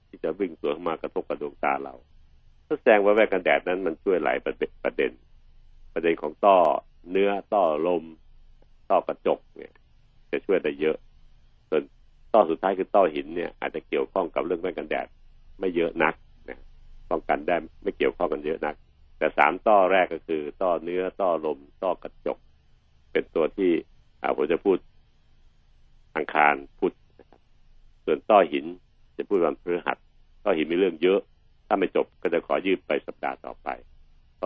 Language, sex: Thai, male